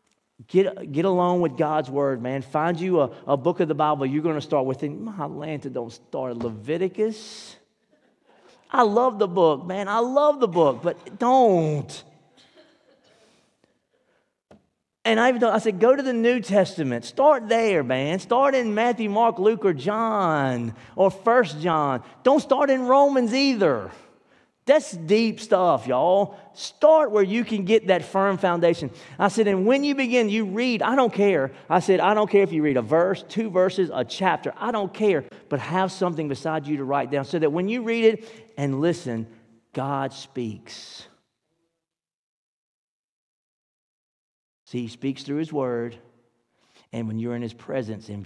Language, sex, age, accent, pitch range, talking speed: English, male, 40-59, American, 135-225 Hz, 170 wpm